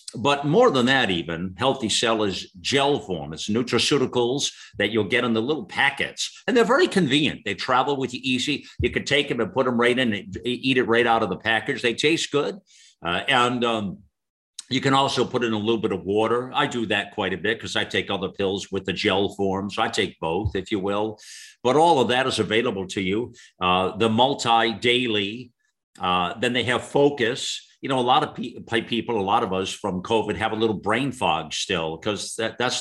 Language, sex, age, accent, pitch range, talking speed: English, male, 50-69, American, 100-125 Hz, 220 wpm